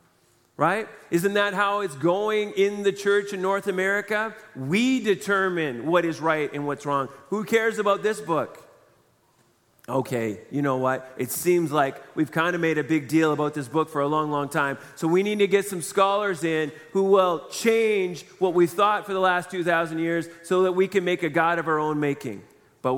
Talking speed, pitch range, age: 205 wpm, 145-185 Hz, 30-49